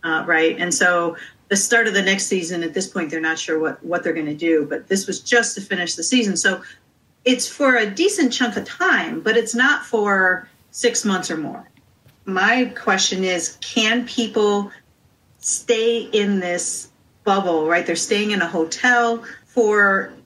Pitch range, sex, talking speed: 170-230 Hz, female, 185 wpm